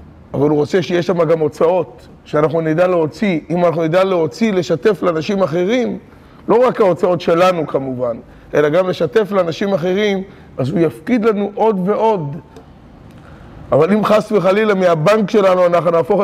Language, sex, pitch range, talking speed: Hebrew, male, 155-195 Hz, 150 wpm